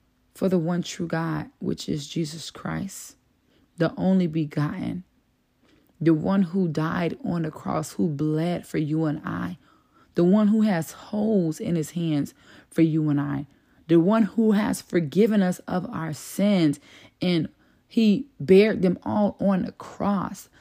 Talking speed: 155 wpm